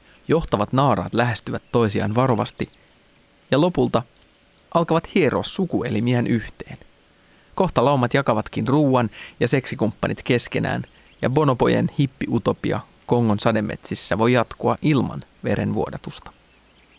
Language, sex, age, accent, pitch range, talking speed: Finnish, male, 30-49, native, 115-150 Hz, 95 wpm